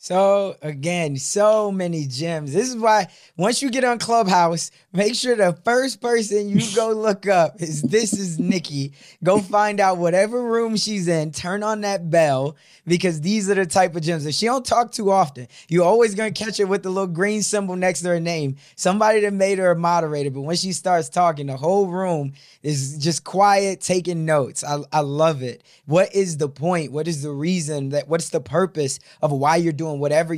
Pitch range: 150-190 Hz